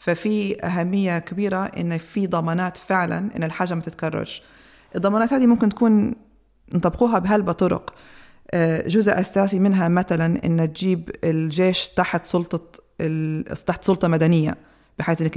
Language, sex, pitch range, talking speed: Arabic, female, 160-185 Hz, 115 wpm